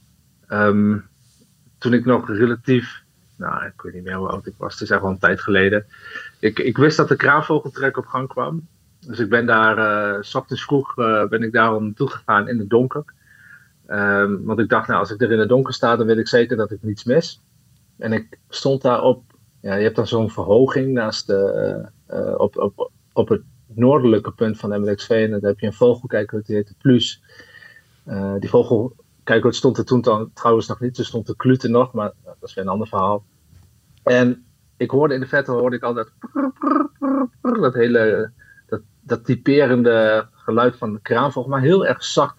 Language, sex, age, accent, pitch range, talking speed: Dutch, male, 40-59, Dutch, 110-130 Hz, 210 wpm